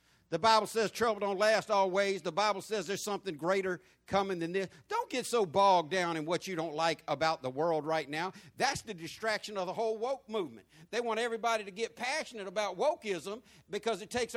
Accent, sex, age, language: American, male, 60-79, English